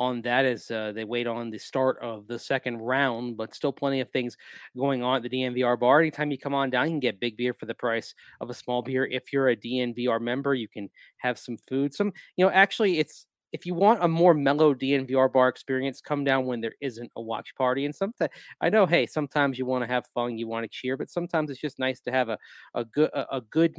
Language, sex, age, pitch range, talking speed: English, male, 30-49, 125-145 Hz, 255 wpm